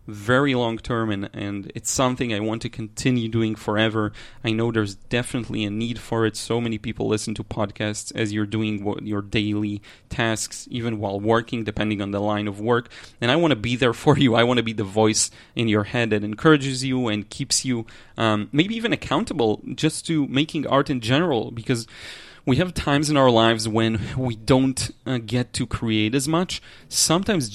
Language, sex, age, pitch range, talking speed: English, male, 30-49, 110-130 Hz, 205 wpm